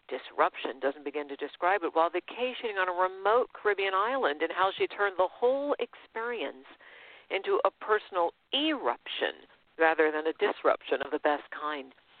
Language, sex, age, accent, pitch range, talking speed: English, female, 50-69, American, 155-230 Hz, 155 wpm